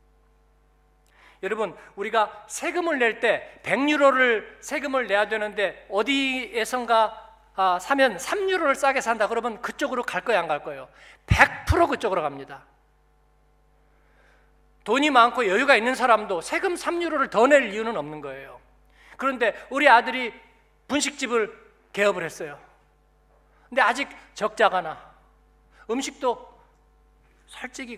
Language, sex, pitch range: Korean, male, 165-255 Hz